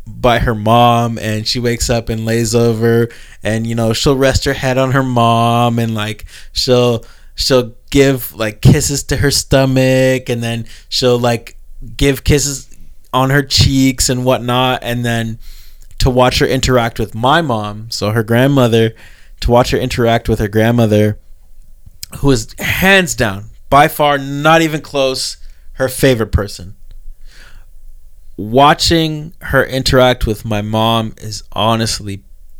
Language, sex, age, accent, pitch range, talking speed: English, male, 20-39, American, 100-130 Hz, 145 wpm